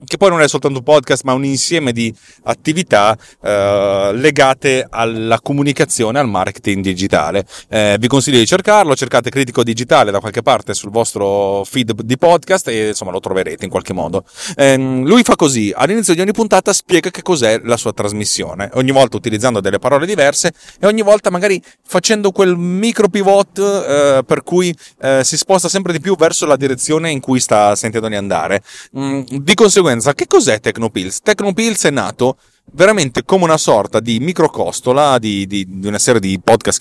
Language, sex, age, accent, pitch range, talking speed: Italian, male, 30-49, native, 105-150 Hz, 175 wpm